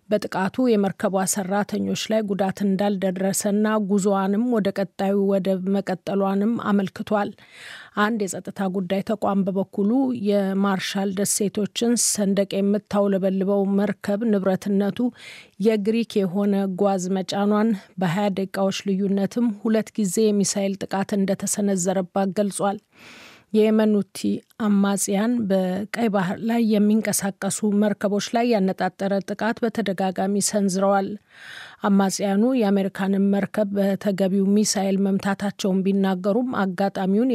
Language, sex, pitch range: Amharic, female, 195-210 Hz